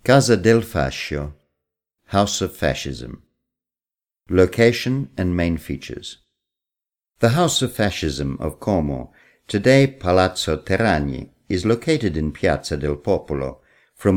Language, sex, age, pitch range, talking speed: Italian, male, 50-69, 75-100 Hz, 110 wpm